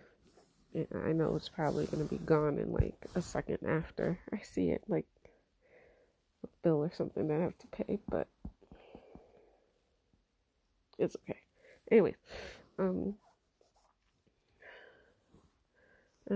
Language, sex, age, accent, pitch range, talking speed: English, female, 30-49, American, 155-200 Hz, 115 wpm